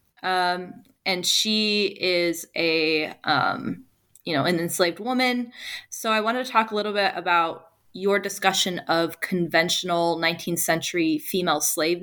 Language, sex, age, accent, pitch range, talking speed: English, female, 20-39, American, 170-205 Hz, 140 wpm